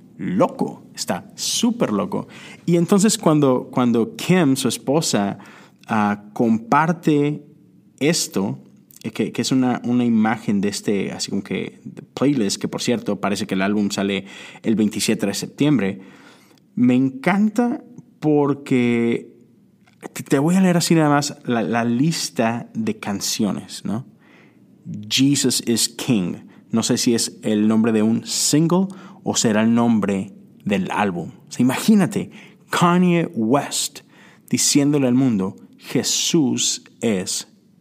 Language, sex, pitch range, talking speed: Spanish, male, 110-165 Hz, 130 wpm